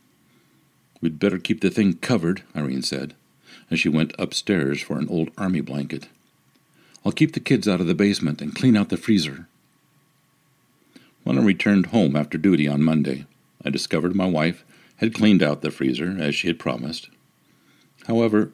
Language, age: English, 50-69